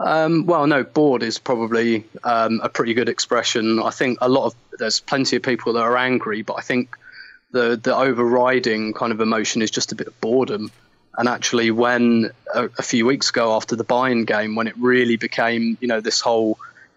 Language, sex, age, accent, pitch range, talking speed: English, male, 20-39, British, 115-130 Hz, 205 wpm